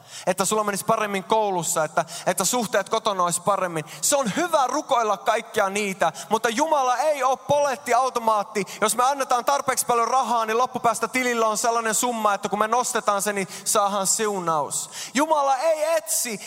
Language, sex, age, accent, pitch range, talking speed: Finnish, male, 20-39, native, 175-255 Hz, 170 wpm